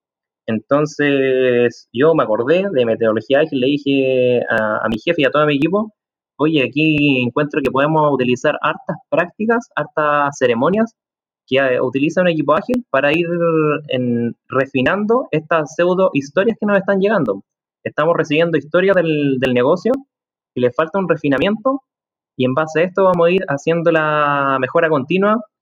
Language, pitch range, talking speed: Spanish, 135-180 Hz, 155 wpm